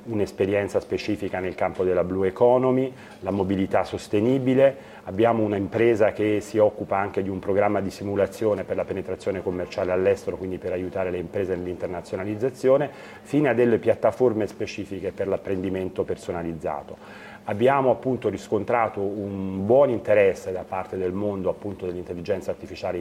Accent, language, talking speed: native, Italian, 140 wpm